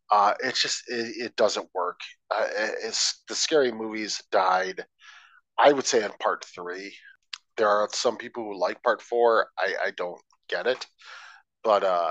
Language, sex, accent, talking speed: English, male, American, 165 wpm